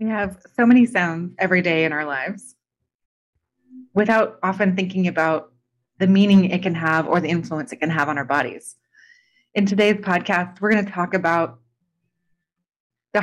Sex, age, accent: female, 30-49, American